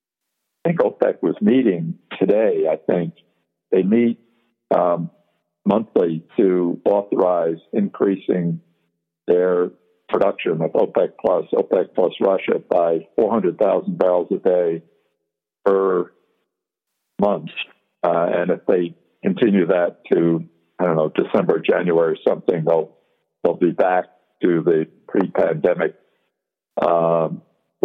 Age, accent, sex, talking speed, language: 60-79, American, male, 110 wpm, English